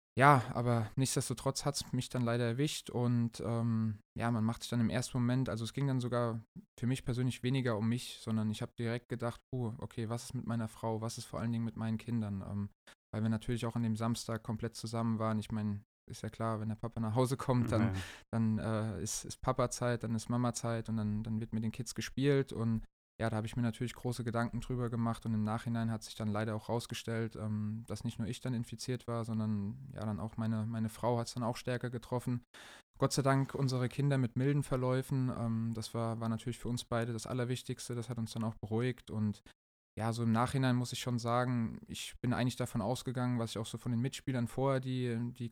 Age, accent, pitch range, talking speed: 20-39, German, 110-125 Hz, 235 wpm